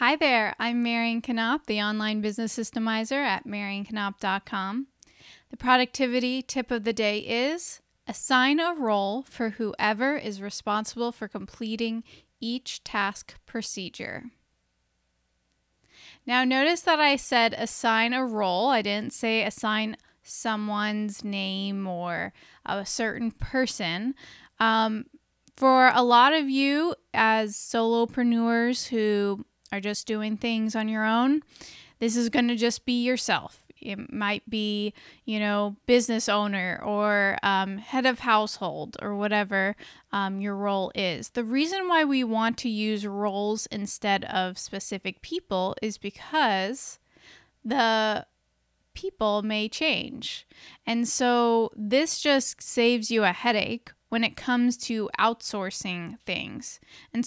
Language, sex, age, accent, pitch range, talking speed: English, female, 10-29, American, 205-250 Hz, 125 wpm